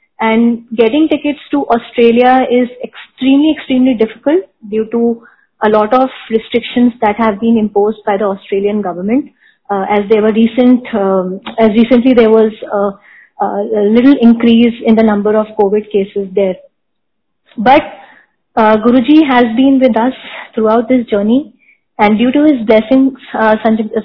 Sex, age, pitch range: female, 20-39, 210-250 Hz